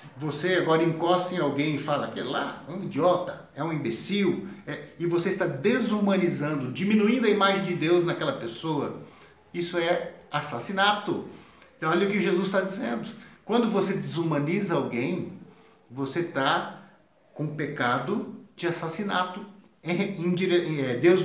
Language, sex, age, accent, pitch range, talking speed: Portuguese, male, 60-79, Brazilian, 150-200 Hz, 145 wpm